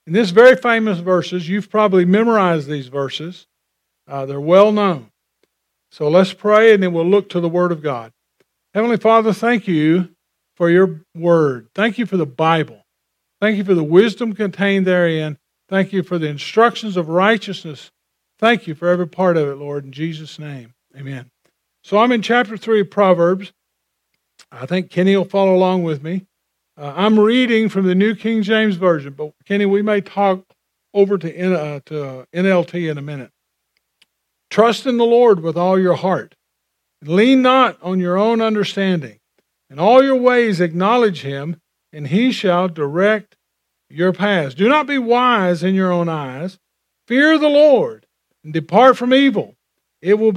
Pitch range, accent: 165-215 Hz, American